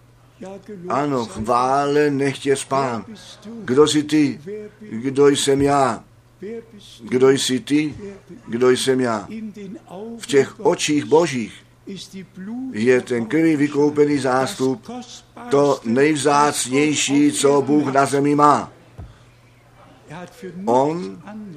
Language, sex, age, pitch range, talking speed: Czech, male, 50-69, 125-160 Hz, 90 wpm